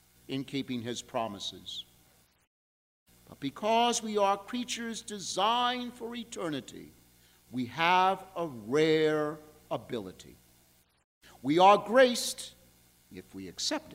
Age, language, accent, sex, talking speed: 50-69, English, American, male, 100 wpm